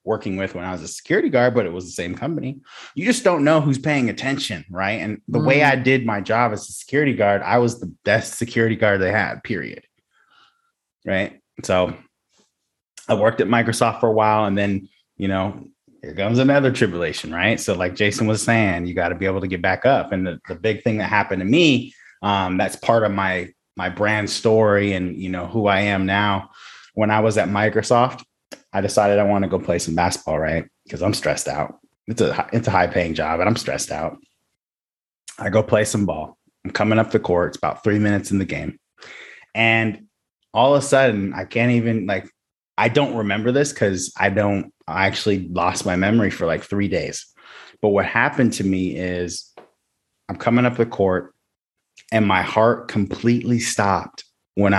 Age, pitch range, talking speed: 30-49, 95-115 Hz, 200 wpm